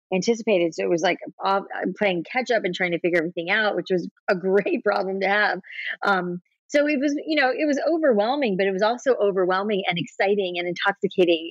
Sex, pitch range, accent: female, 180-215 Hz, American